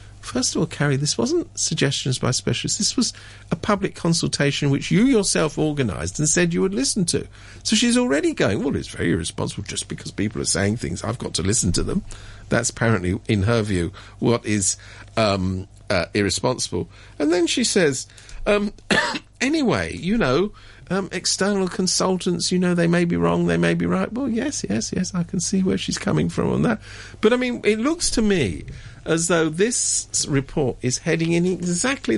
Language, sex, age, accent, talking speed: English, male, 50-69, British, 190 wpm